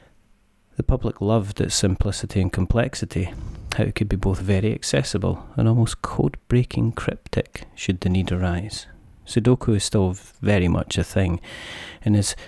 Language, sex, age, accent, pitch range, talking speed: English, male, 30-49, British, 95-110 Hz, 150 wpm